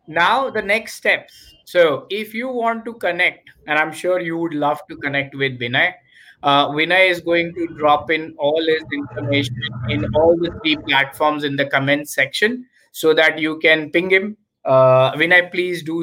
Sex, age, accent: male, 20-39, Indian